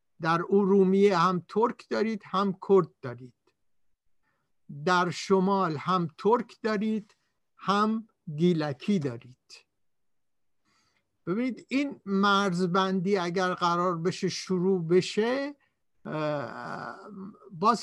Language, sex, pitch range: Persian, male, 165-210 Hz